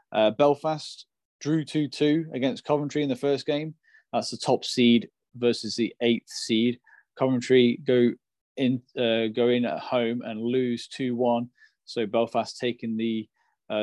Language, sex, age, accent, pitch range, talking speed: English, male, 20-39, British, 115-130 Hz, 150 wpm